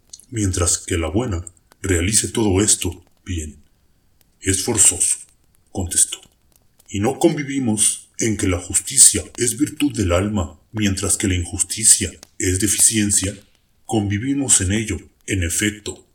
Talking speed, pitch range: 125 wpm, 90-110 Hz